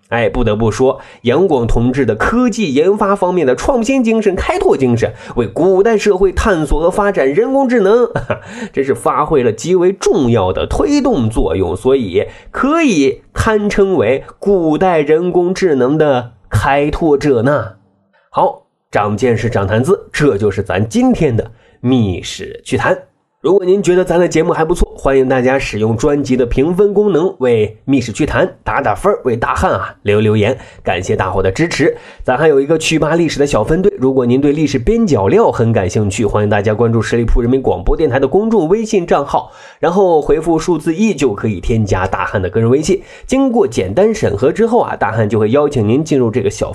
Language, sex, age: Chinese, male, 20-39